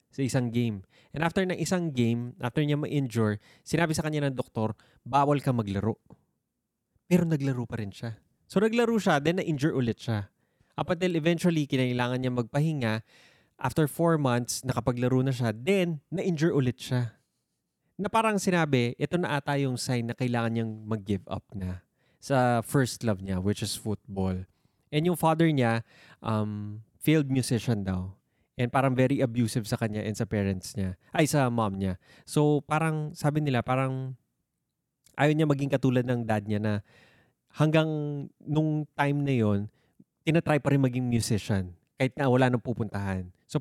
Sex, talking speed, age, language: male, 160 wpm, 20-39, Filipino